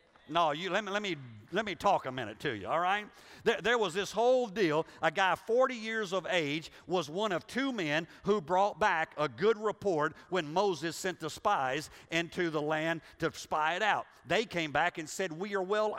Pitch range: 170-225 Hz